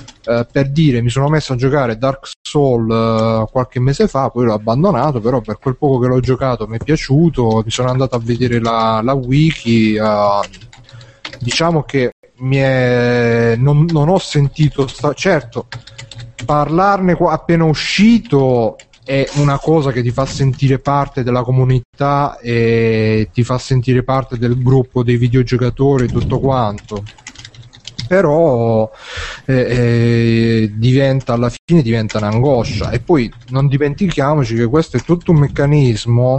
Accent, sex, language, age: native, male, Italian, 30-49